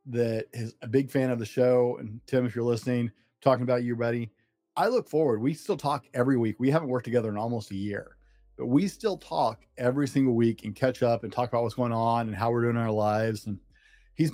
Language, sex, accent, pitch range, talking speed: English, male, American, 110-135 Hz, 245 wpm